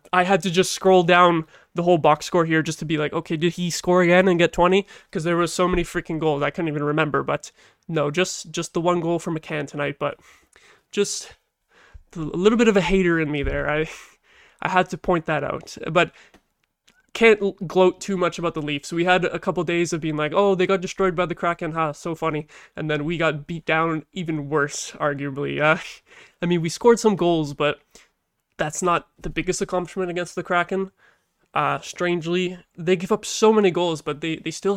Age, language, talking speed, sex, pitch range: 20-39, English, 220 wpm, male, 155-180 Hz